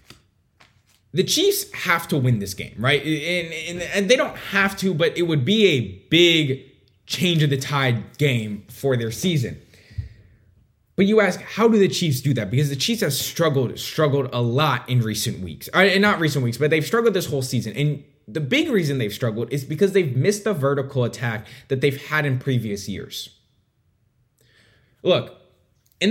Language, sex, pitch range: English, male, 120-165 Hz